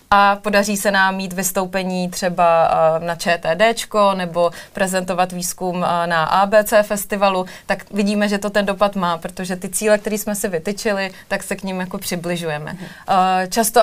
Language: Czech